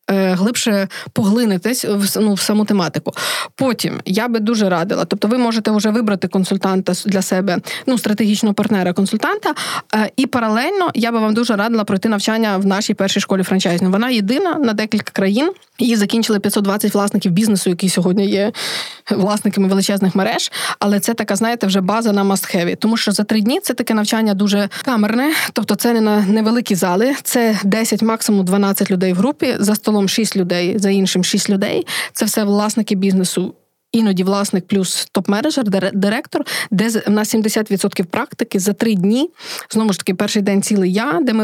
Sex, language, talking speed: female, Ukrainian, 170 wpm